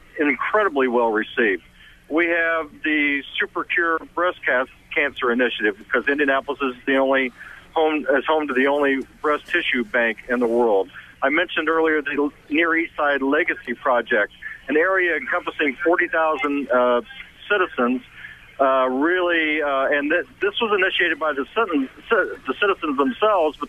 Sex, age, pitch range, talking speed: male, 50-69, 130-160 Hz, 150 wpm